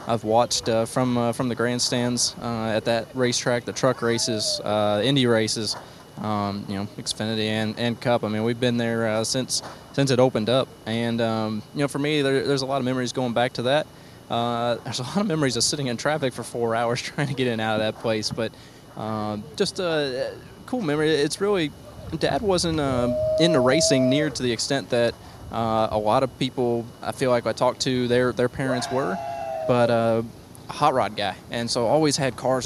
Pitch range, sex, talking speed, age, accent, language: 115-140 Hz, male, 215 wpm, 20-39, American, English